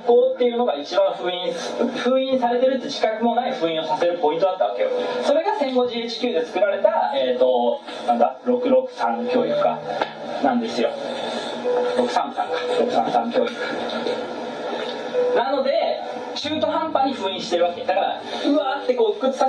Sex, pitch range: male, 230-325 Hz